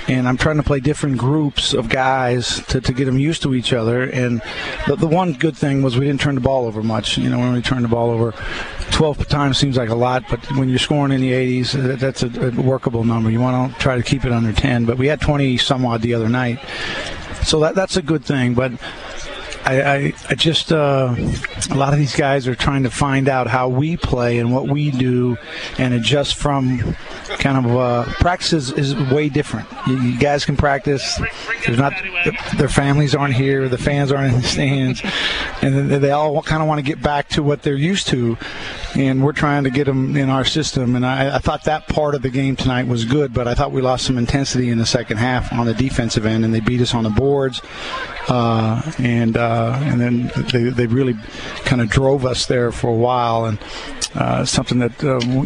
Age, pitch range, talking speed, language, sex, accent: 40-59, 120-145 Hz, 225 wpm, English, male, American